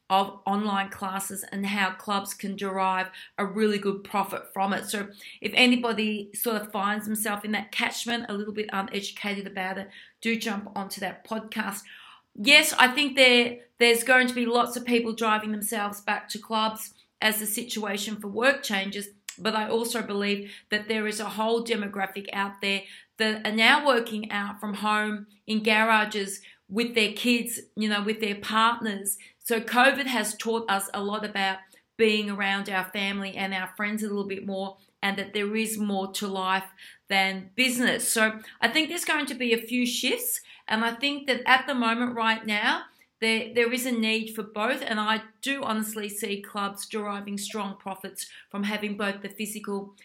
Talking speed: 185 wpm